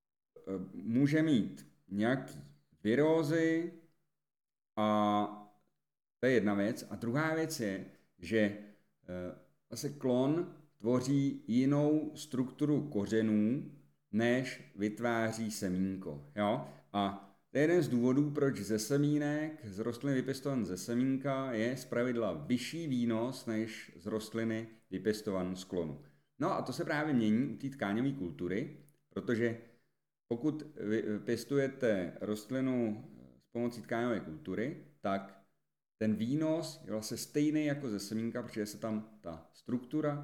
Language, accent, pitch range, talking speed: Czech, native, 100-135 Hz, 115 wpm